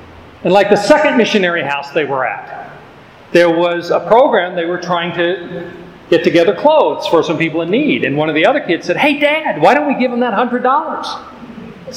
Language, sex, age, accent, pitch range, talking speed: English, male, 40-59, American, 175-240 Hz, 205 wpm